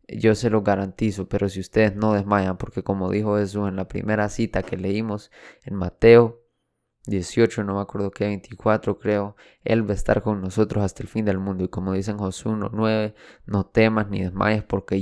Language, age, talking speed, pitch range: Spanish, 20-39, 200 wpm, 95-110 Hz